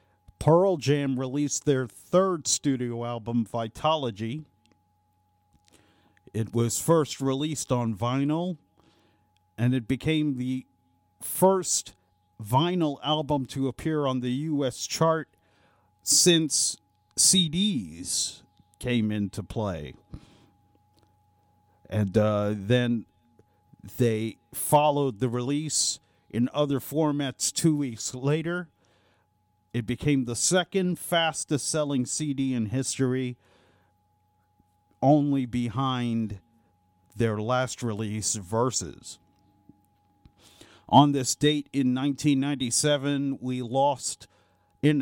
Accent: American